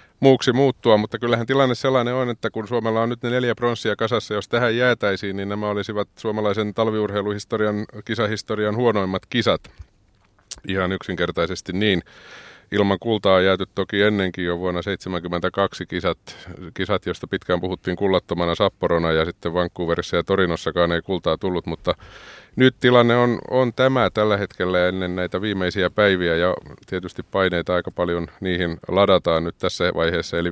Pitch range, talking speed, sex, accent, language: 90-105 Hz, 150 wpm, male, native, Finnish